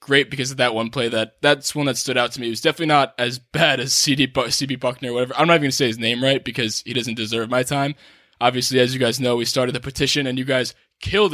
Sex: male